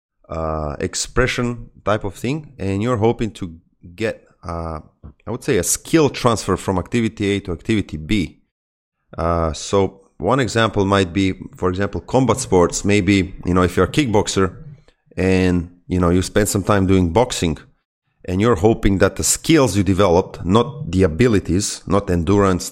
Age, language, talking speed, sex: 30-49, English, 165 wpm, male